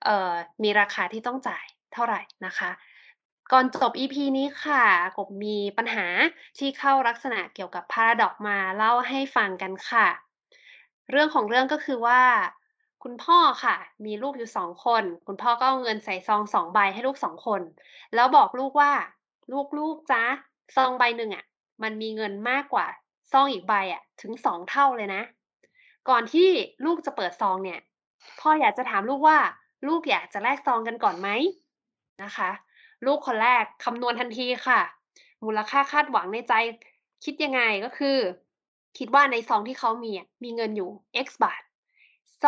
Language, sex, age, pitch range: Thai, female, 20-39, 220-290 Hz